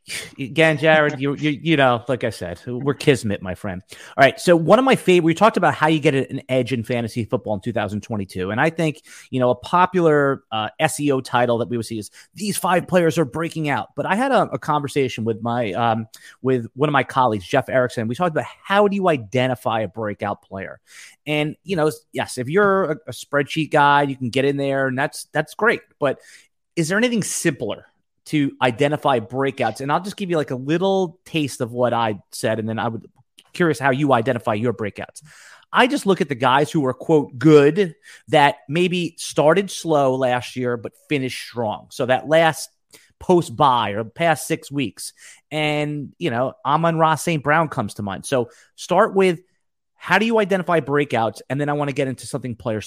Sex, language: male, English